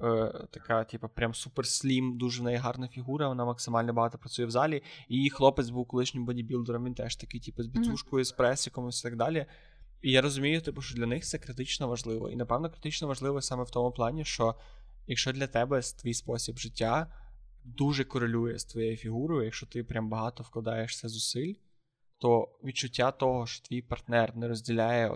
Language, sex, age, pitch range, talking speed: Ukrainian, male, 20-39, 115-135 Hz, 180 wpm